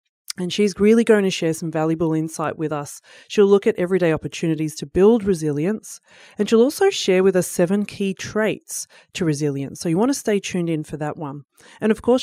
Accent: Australian